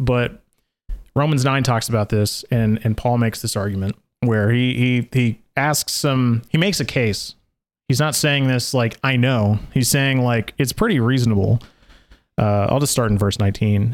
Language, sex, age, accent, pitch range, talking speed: English, male, 30-49, American, 110-145 Hz, 180 wpm